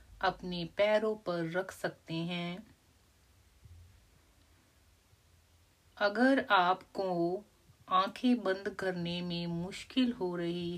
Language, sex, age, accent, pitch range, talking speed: Hindi, female, 30-49, native, 135-190 Hz, 85 wpm